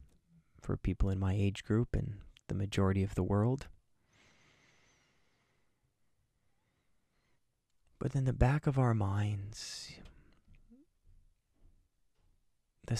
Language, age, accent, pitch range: English, 20-39, American, 95-115 Hz